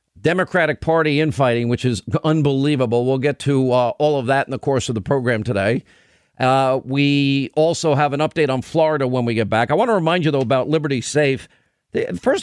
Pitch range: 130-160 Hz